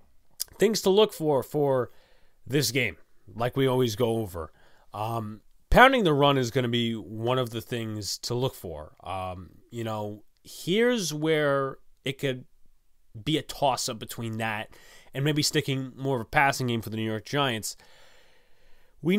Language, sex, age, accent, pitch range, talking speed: English, male, 30-49, American, 115-155 Hz, 165 wpm